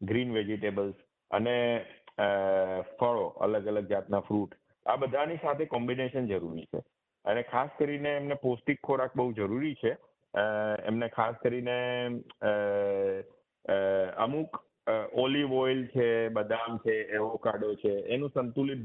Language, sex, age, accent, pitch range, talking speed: Gujarati, male, 50-69, native, 110-135 Hz, 110 wpm